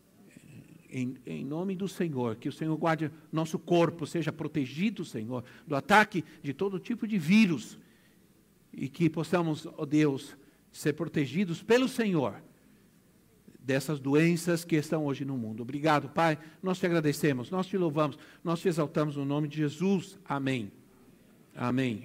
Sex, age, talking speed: male, 60-79, 150 wpm